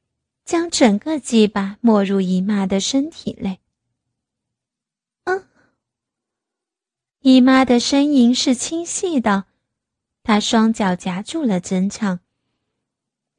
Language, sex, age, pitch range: Chinese, female, 30-49, 210-275 Hz